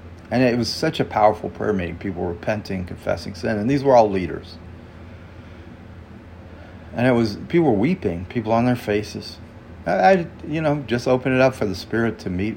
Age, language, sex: 40-59, English, male